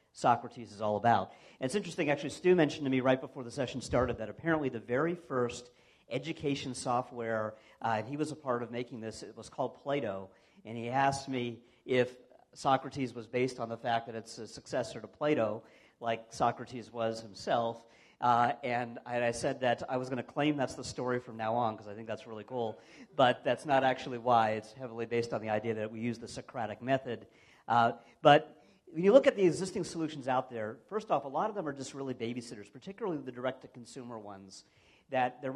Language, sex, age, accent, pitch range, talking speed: English, male, 50-69, American, 115-140 Hz, 210 wpm